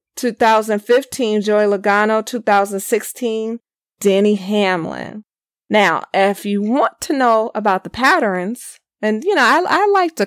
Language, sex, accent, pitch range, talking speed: English, female, American, 200-250 Hz, 130 wpm